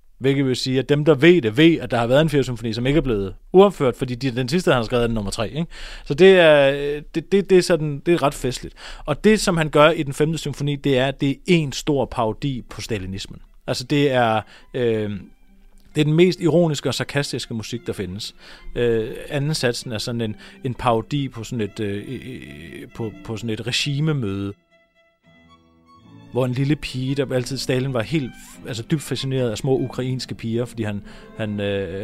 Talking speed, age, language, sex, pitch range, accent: 215 wpm, 30-49, Danish, male, 115-150 Hz, native